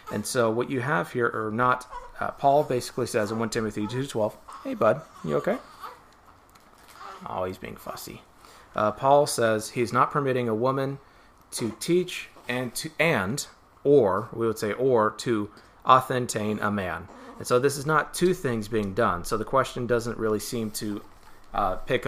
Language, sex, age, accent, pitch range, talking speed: English, male, 30-49, American, 105-130 Hz, 175 wpm